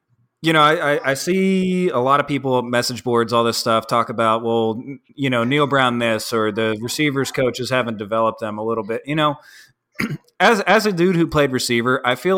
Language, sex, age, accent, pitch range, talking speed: English, male, 20-39, American, 120-165 Hz, 210 wpm